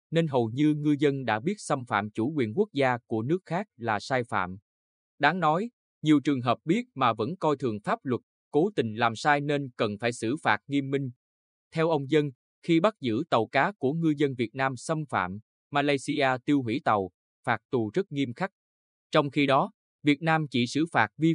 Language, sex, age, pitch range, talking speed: Vietnamese, male, 20-39, 110-150 Hz, 210 wpm